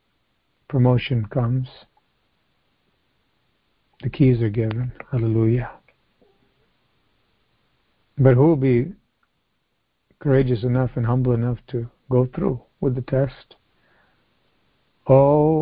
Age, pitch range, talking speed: 60-79, 125-140 Hz, 90 wpm